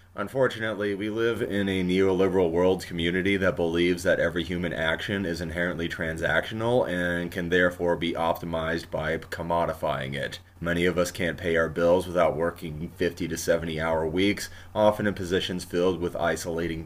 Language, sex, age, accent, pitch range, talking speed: English, male, 30-49, American, 85-95 Hz, 160 wpm